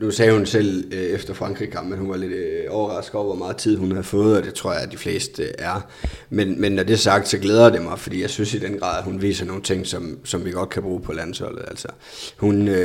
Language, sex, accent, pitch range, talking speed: Danish, male, native, 95-105 Hz, 270 wpm